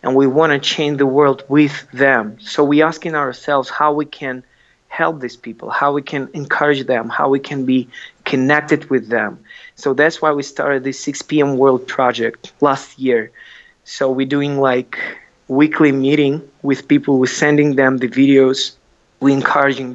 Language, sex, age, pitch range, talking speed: English, male, 20-39, 125-145 Hz, 175 wpm